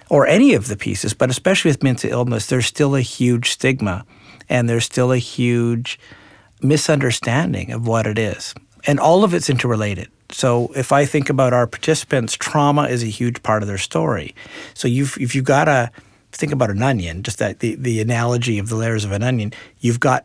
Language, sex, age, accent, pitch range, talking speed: English, male, 50-69, American, 115-140 Hz, 200 wpm